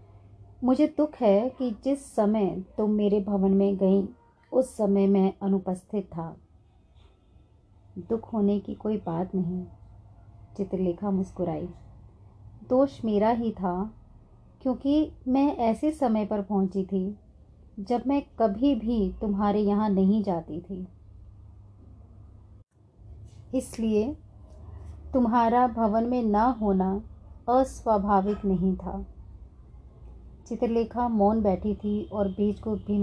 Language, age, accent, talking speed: Hindi, 30-49, native, 110 wpm